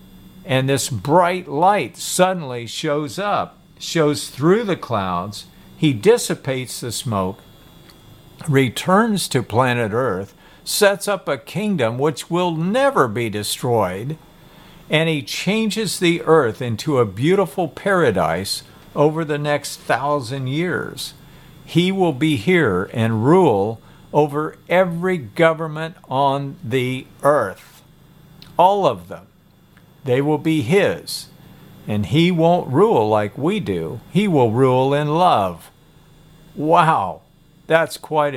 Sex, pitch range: male, 130-170 Hz